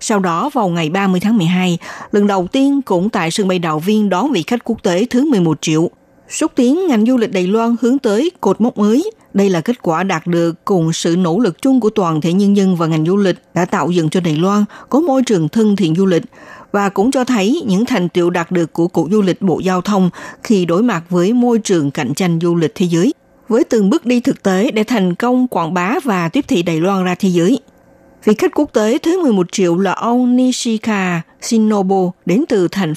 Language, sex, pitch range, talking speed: Vietnamese, female, 175-235 Hz, 235 wpm